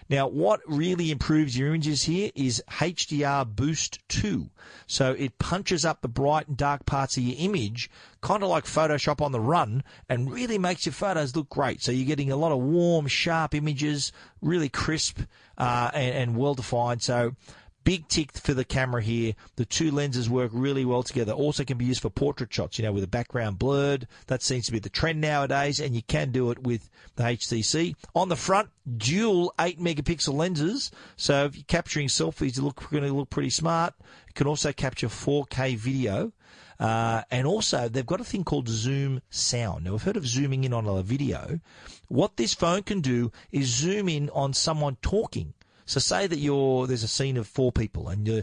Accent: Australian